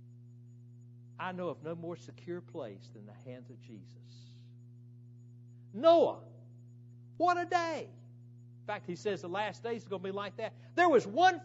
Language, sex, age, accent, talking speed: English, male, 60-79, American, 170 wpm